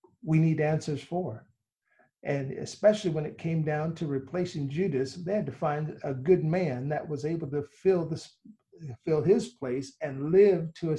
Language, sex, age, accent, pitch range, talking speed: English, male, 50-69, American, 140-170 Hz, 180 wpm